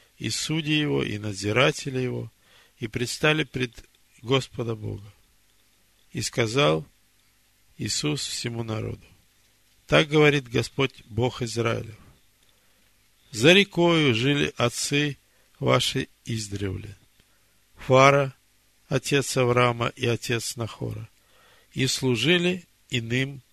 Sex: male